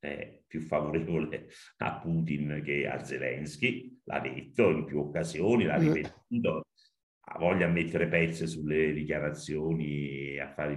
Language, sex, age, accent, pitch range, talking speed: Italian, male, 50-69, native, 70-95 Hz, 145 wpm